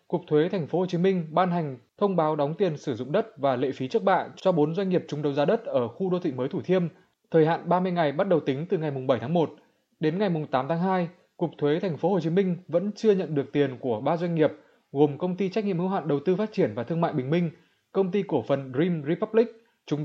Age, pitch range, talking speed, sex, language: 20-39, 145-190 Hz, 280 wpm, male, Vietnamese